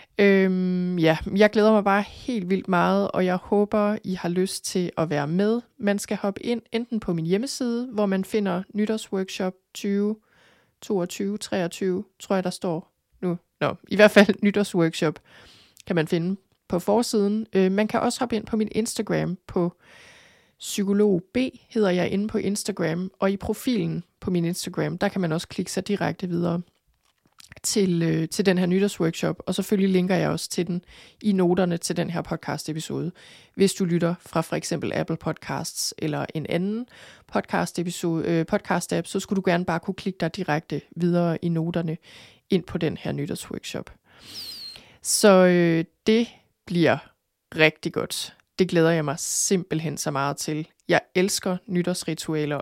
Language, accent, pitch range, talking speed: Danish, native, 170-205 Hz, 165 wpm